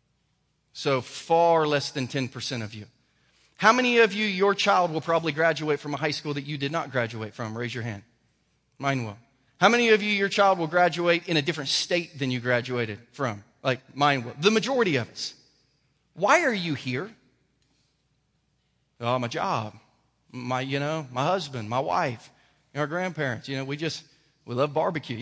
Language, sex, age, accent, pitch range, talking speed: English, male, 30-49, American, 150-235 Hz, 185 wpm